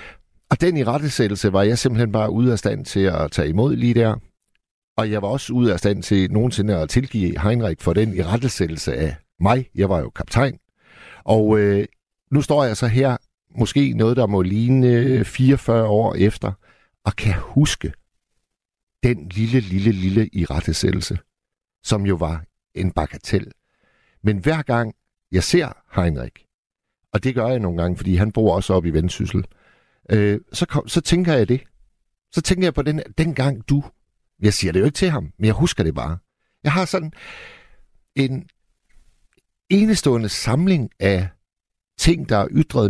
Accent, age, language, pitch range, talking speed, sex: native, 60-79, Danish, 95-135 Hz, 170 wpm, male